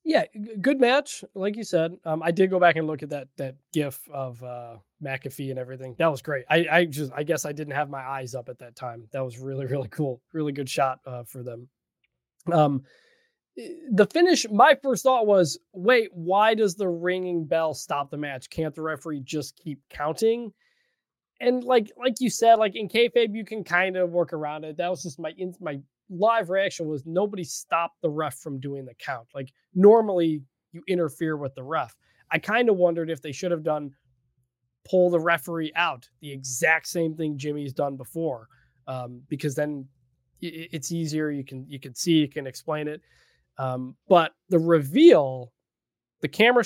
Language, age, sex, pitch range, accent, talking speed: English, 20-39, male, 135-185 Hz, American, 195 wpm